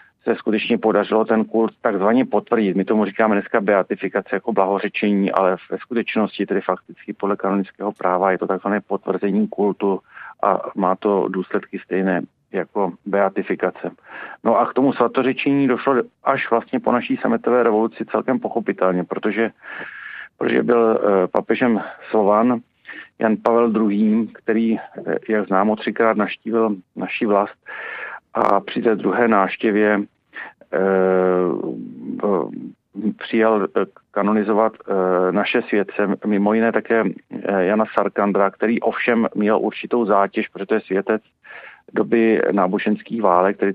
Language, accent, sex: Czech, native, male